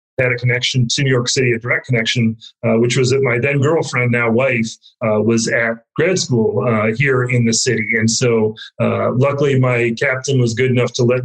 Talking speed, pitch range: 215 wpm, 115-135 Hz